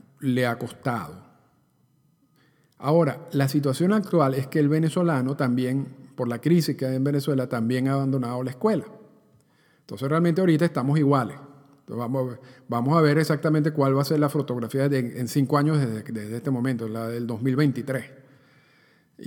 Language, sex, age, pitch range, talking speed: Spanish, male, 50-69, 125-150 Hz, 155 wpm